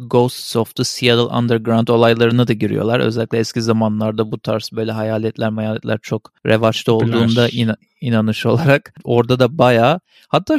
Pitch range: 115-150 Hz